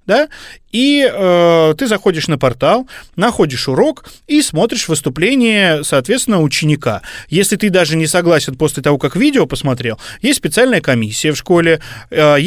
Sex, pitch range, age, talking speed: male, 145-200 Hz, 30-49, 145 wpm